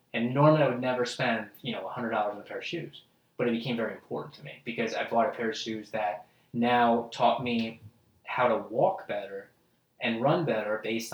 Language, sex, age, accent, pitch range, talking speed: English, male, 20-39, American, 110-120 Hz, 215 wpm